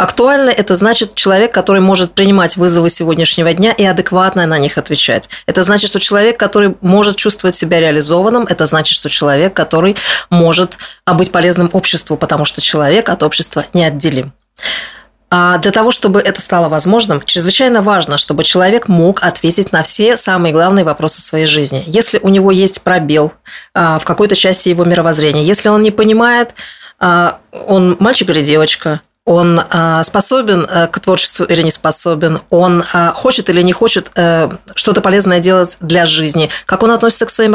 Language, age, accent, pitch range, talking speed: Russian, 20-39, native, 165-205 Hz, 165 wpm